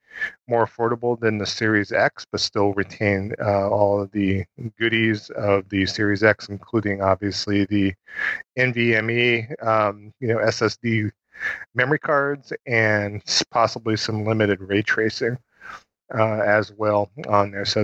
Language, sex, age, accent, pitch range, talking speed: English, male, 40-59, American, 105-115 Hz, 135 wpm